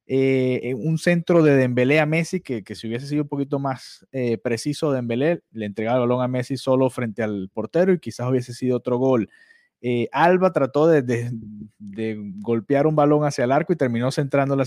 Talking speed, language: 200 wpm, Spanish